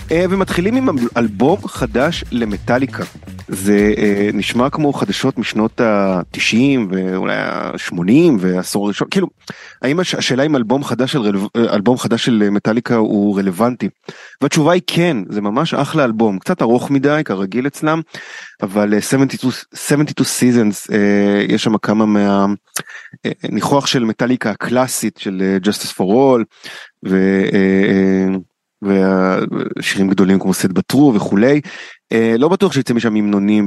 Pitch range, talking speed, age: 95-125 Hz, 125 wpm, 30-49